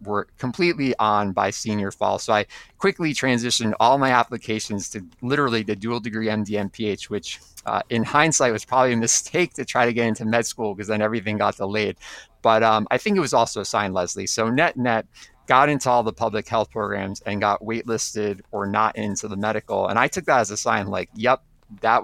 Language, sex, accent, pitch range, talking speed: English, male, American, 100-115 Hz, 210 wpm